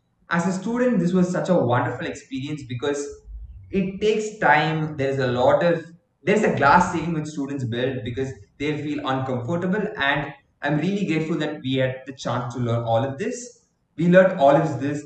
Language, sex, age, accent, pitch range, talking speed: English, male, 20-39, Indian, 125-185 Hz, 185 wpm